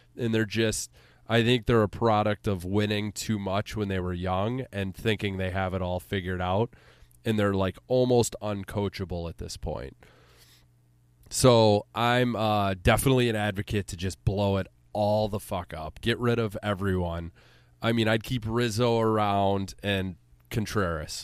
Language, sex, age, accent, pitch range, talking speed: English, male, 20-39, American, 95-120 Hz, 165 wpm